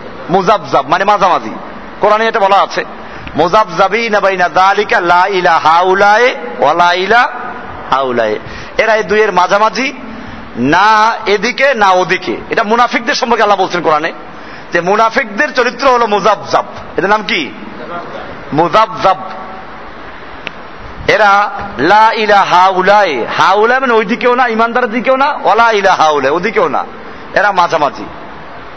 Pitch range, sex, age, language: 195-250 Hz, male, 50-69, Bengali